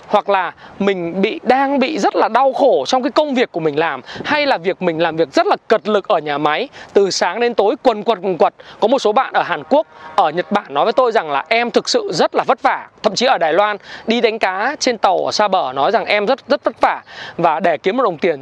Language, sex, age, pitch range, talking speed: Vietnamese, male, 20-39, 205-275 Hz, 280 wpm